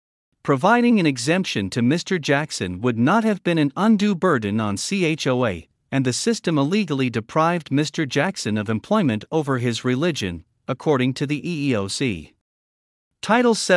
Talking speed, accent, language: 140 wpm, American, English